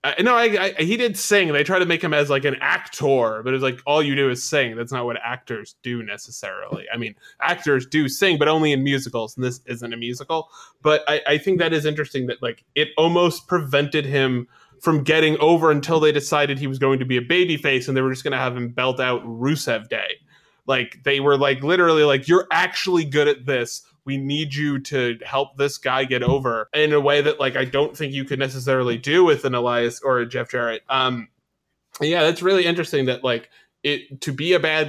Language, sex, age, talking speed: English, male, 20-39, 230 wpm